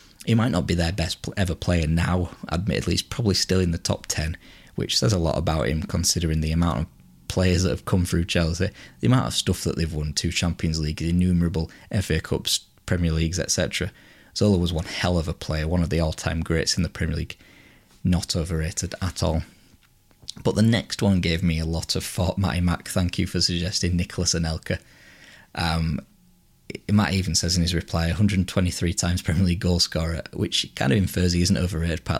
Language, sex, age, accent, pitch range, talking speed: English, male, 20-39, British, 80-95 Hz, 200 wpm